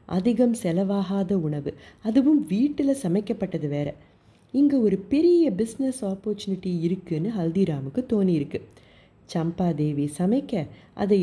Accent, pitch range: native, 170-230 Hz